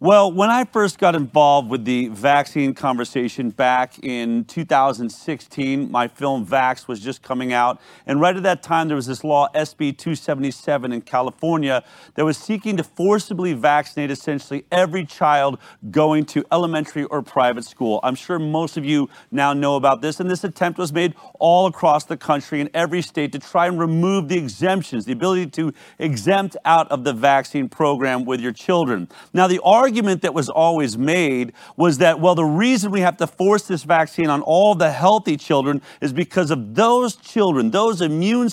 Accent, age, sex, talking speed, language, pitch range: American, 40-59, male, 180 wpm, English, 140-190 Hz